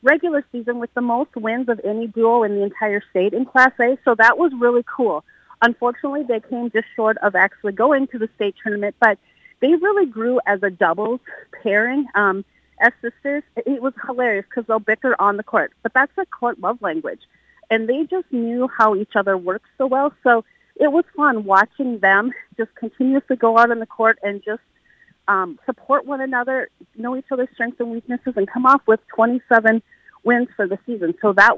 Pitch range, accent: 215-255 Hz, American